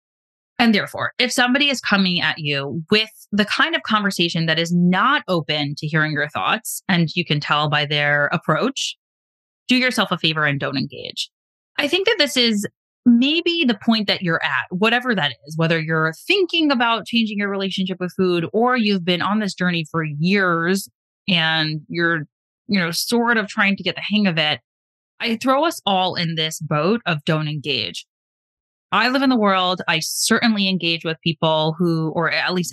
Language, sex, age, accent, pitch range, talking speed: English, female, 20-39, American, 160-220 Hz, 190 wpm